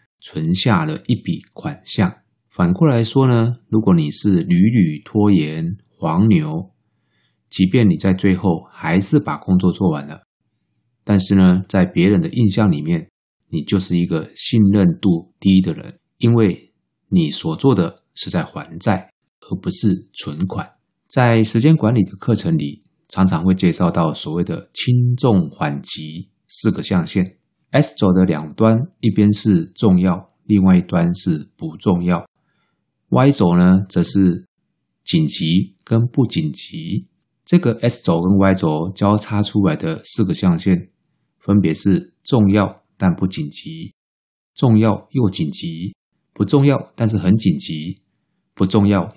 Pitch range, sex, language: 90-125 Hz, male, Chinese